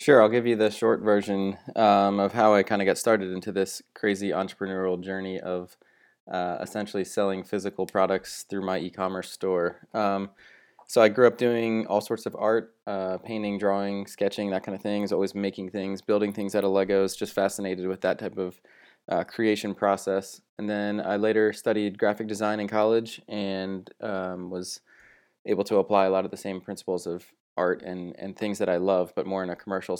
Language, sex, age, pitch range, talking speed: English, male, 20-39, 95-105 Hz, 200 wpm